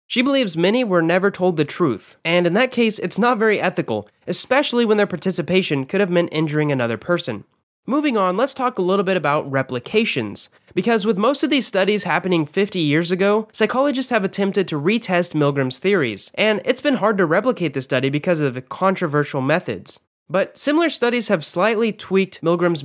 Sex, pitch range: male, 155-215 Hz